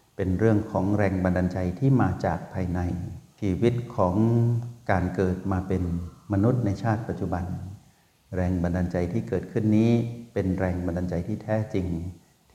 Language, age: Thai, 60-79